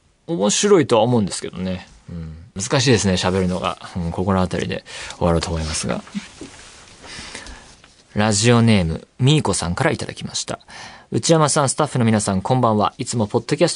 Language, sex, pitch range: Japanese, male, 105-170 Hz